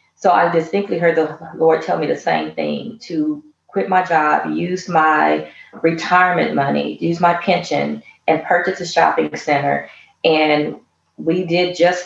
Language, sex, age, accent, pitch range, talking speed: English, female, 30-49, American, 155-170 Hz, 155 wpm